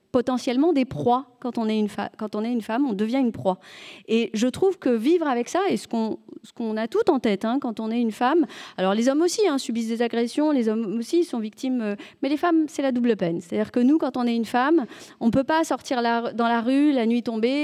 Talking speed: 270 wpm